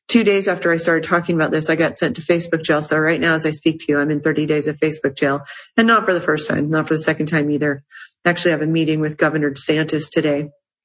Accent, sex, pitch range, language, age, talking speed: American, female, 155-180 Hz, English, 30-49, 275 wpm